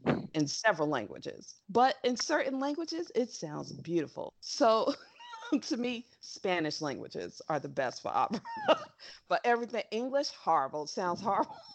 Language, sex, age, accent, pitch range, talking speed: English, female, 40-59, American, 175-245 Hz, 135 wpm